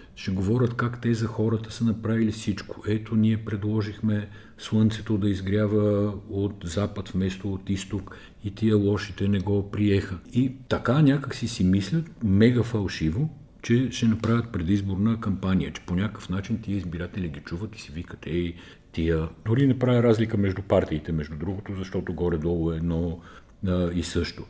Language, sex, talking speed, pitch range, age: Bulgarian, male, 160 wpm, 85-105 Hz, 50-69